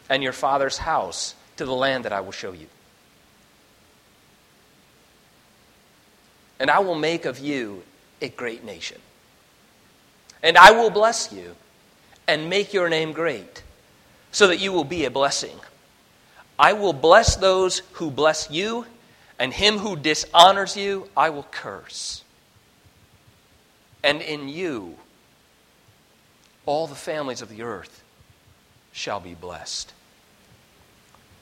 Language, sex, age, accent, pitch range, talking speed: English, male, 40-59, American, 135-190 Hz, 125 wpm